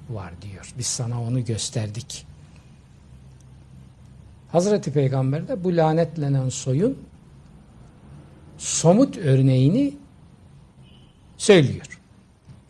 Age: 60-79